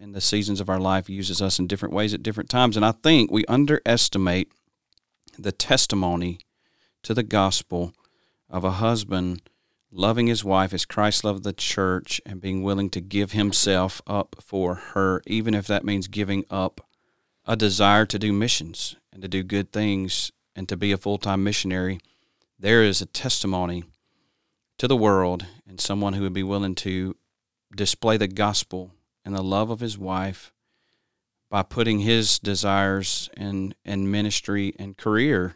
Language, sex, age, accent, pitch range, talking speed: English, male, 40-59, American, 95-105 Hz, 165 wpm